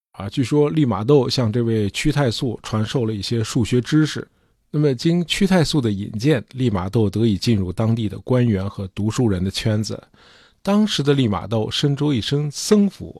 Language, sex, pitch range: Chinese, male, 105-145 Hz